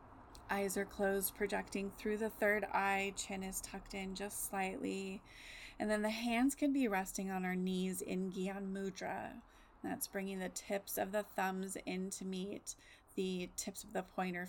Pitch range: 190-210 Hz